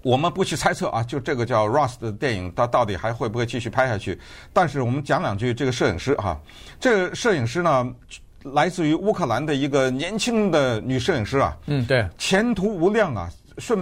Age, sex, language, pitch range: 50-69, male, Chinese, 120-180 Hz